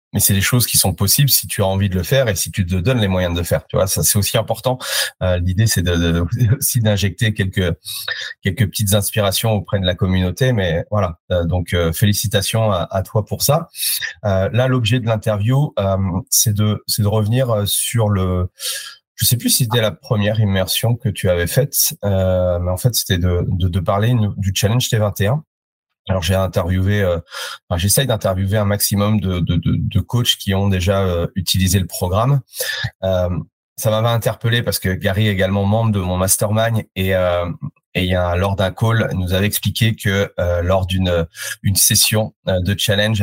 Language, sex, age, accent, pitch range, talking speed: French, male, 30-49, French, 95-115 Hz, 205 wpm